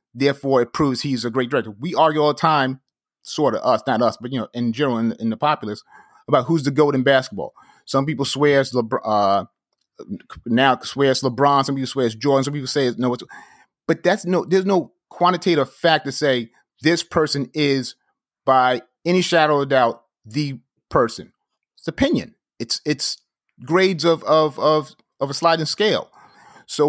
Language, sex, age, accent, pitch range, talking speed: English, male, 30-49, American, 130-160 Hz, 190 wpm